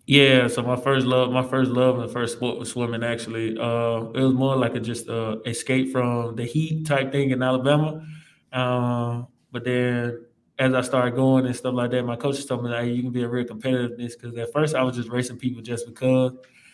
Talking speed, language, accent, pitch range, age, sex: 225 wpm, English, American, 120-130 Hz, 20-39, male